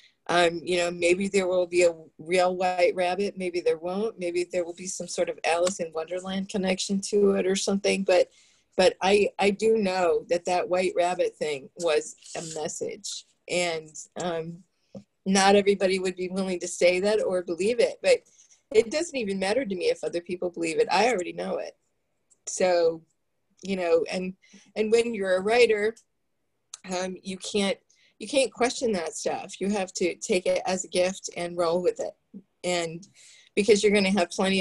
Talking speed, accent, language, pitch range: 185 wpm, American, English, 175-220 Hz